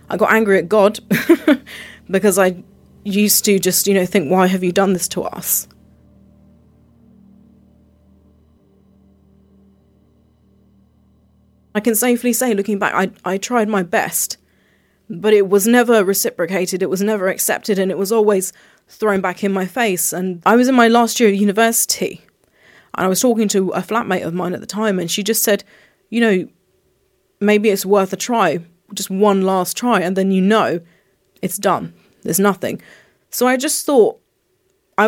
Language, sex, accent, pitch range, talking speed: English, female, British, 185-225 Hz, 170 wpm